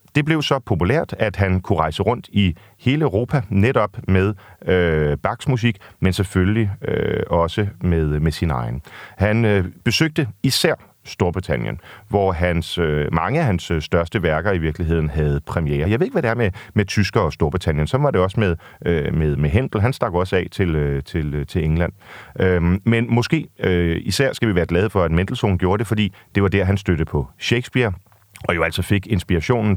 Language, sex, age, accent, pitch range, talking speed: Danish, male, 40-59, native, 85-115 Hz, 200 wpm